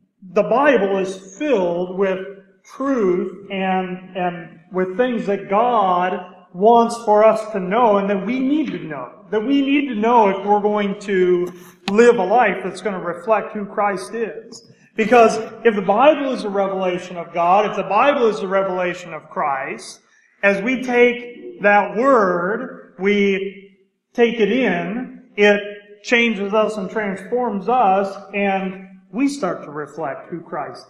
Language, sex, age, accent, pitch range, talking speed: English, male, 40-59, American, 190-235 Hz, 155 wpm